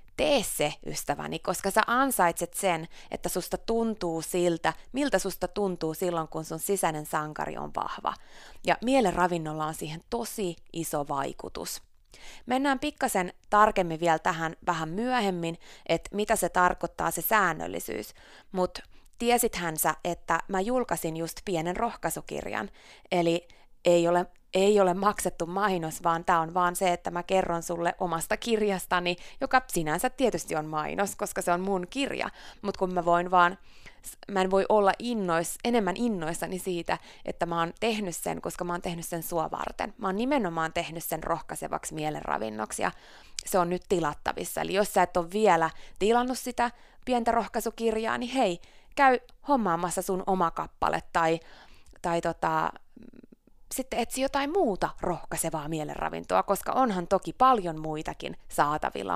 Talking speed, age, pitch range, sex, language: 150 wpm, 30-49, 165-210 Hz, female, Finnish